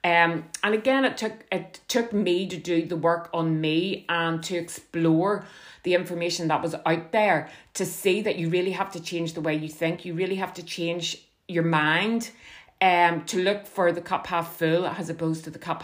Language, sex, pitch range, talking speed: English, female, 160-180 Hz, 210 wpm